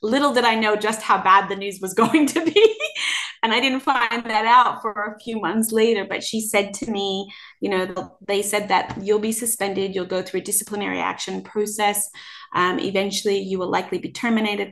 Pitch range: 185-215 Hz